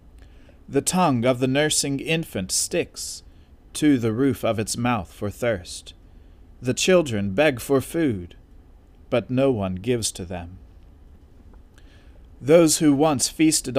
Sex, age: male, 40-59